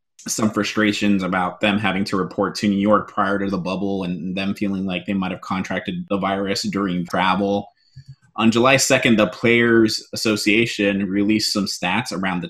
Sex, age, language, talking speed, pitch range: male, 20-39, English, 180 wpm, 95-110 Hz